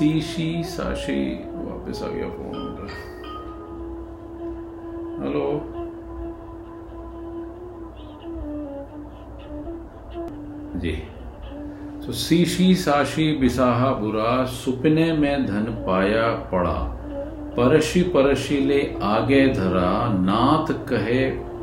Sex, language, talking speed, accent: male, Hindi, 65 wpm, native